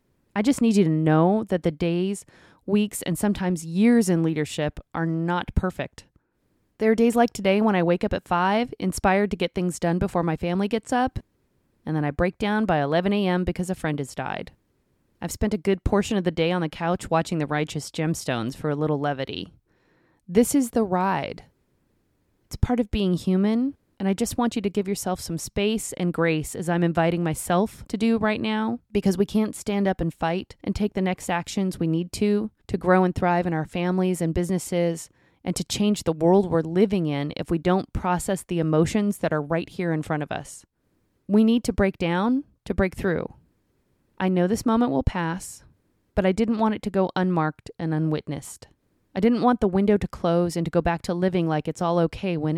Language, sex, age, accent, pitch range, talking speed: English, female, 20-39, American, 165-205 Hz, 215 wpm